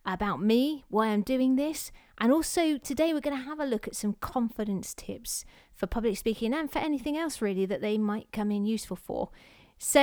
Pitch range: 210-275 Hz